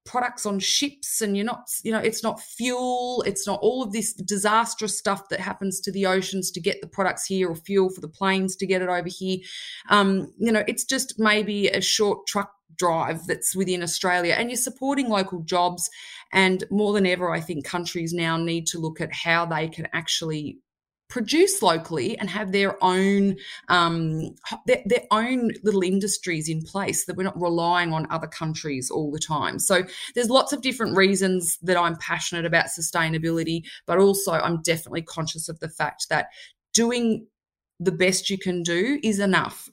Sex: female